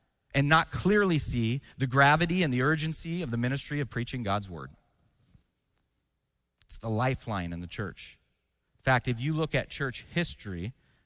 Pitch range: 105-155 Hz